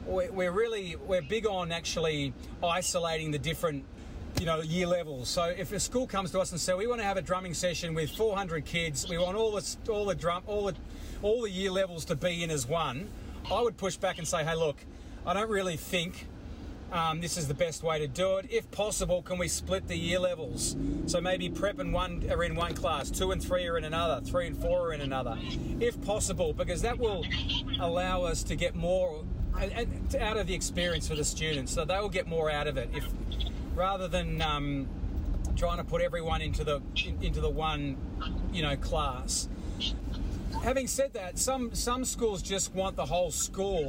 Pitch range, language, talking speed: 150-190 Hz, English, 210 wpm